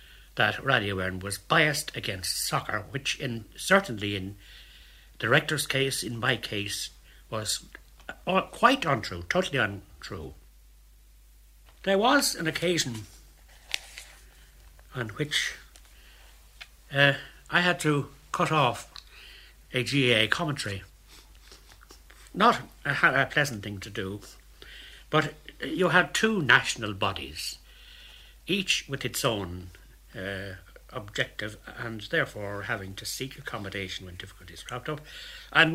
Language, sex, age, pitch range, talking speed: English, male, 60-79, 95-140 Hz, 110 wpm